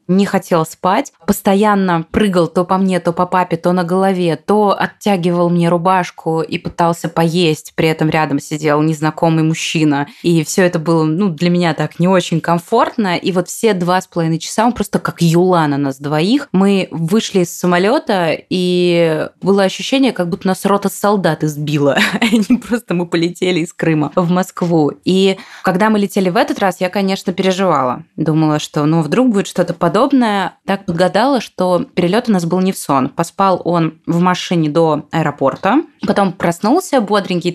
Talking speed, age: 175 wpm, 20-39